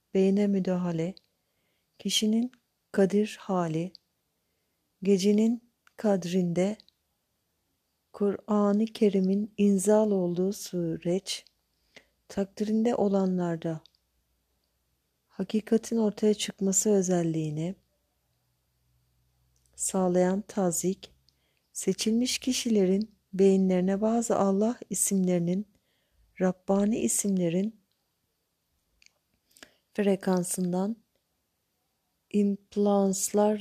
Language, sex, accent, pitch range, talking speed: Turkish, female, native, 180-210 Hz, 55 wpm